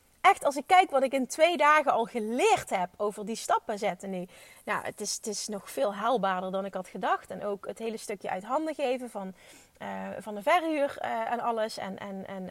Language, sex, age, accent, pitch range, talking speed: Dutch, female, 30-49, Dutch, 220-305 Hz, 215 wpm